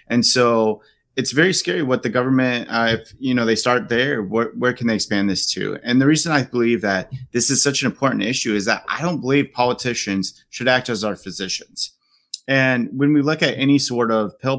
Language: English